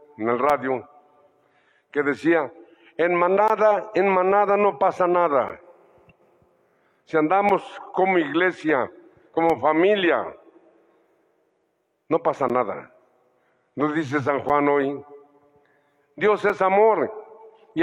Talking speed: 100 wpm